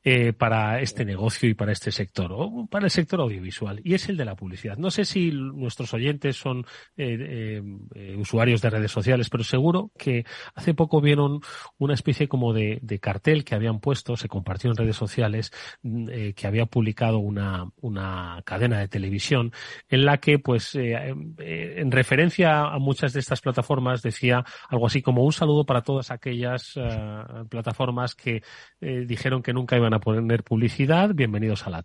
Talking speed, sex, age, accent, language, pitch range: 180 wpm, male, 30-49, Spanish, Spanish, 110-145 Hz